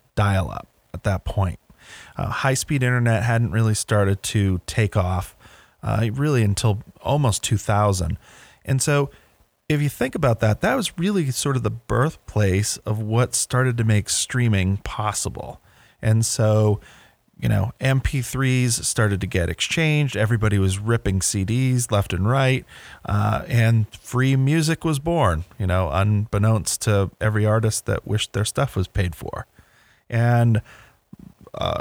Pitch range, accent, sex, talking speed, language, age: 105-130 Hz, American, male, 145 wpm, English, 40-59